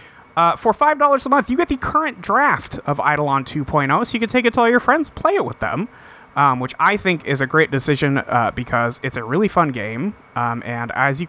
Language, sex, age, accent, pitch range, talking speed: English, male, 30-49, American, 130-200 Hz, 240 wpm